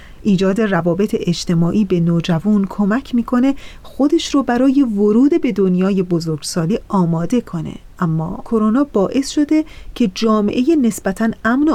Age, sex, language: 30-49, female, Persian